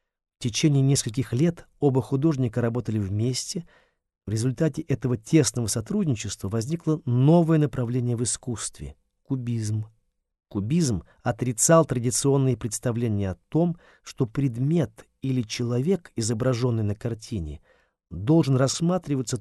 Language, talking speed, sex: Russian, 105 wpm, male